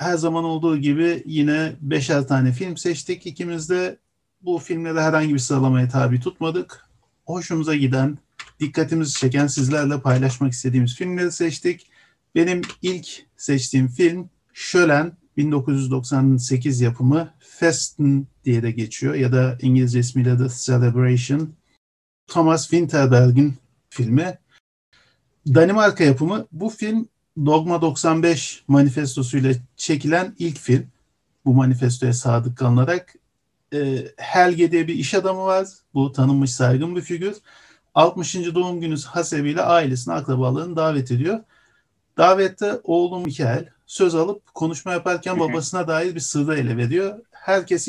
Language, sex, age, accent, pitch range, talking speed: Turkish, male, 50-69, native, 130-170 Hz, 115 wpm